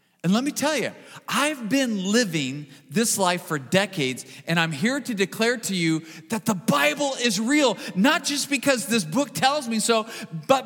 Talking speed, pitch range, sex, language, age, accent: 185 wpm, 205-270 Hz, male, English, 40-59, American